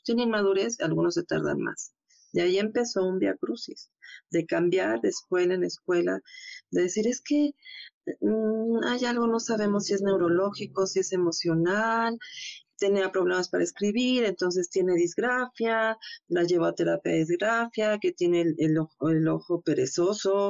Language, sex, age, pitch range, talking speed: Spanish, female, 40-59, 150-215 Hz, 150 wpm